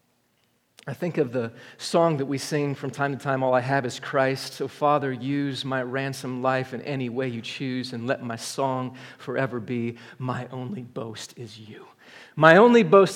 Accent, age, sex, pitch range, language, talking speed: American, 40-59, male, 135-185 Hz, English, 190 wpm